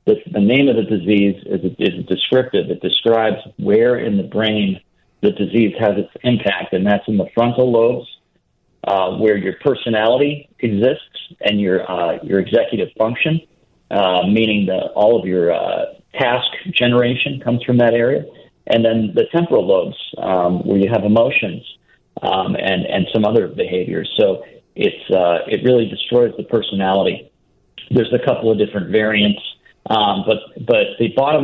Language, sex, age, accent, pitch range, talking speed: English, male, 50-69, American, 100-120 Hz, 165 wpm